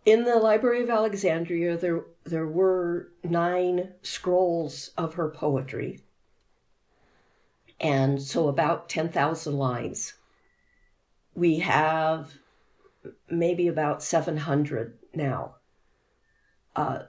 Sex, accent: female, American